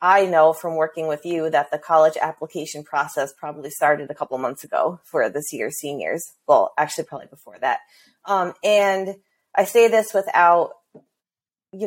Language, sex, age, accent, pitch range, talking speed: English, female, 30-49, American, 155-185 Hz, 165 wpm